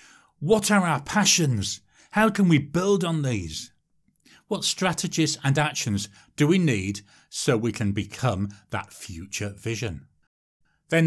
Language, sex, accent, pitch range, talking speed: English, male, British, 100-155 Hz, 135 wpm